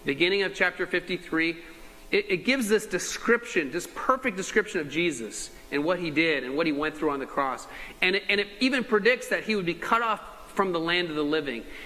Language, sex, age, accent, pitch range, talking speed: English, male, 30-49, American, 160-220 Hz, 225 wpm